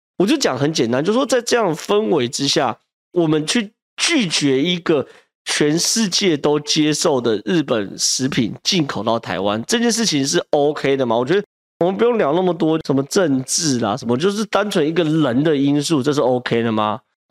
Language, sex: Chinese, male